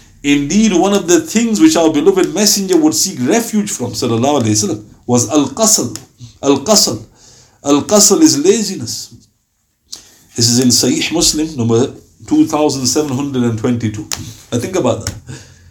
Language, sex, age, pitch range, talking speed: English, male, 60-79, 110-160 Hz, 125 wpm